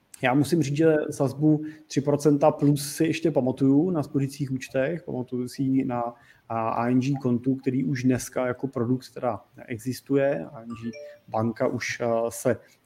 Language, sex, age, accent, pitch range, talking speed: Czech, male, 30-49, native, 120-140 Hz, 135 wpm